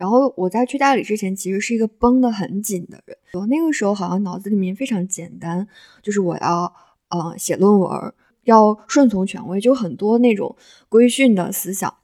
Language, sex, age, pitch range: Chinese, female, 20-39, 195-250 Hz